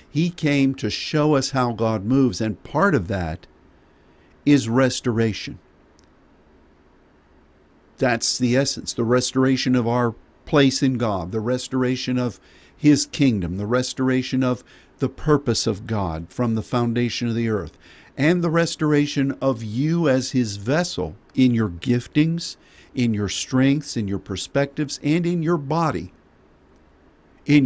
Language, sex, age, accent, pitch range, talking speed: English, male, 50-69, American, 105-135 Hz, 140 wpm